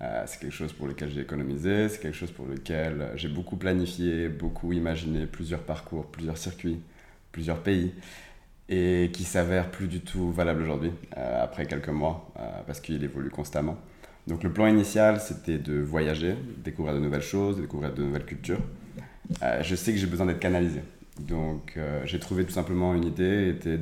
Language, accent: English, French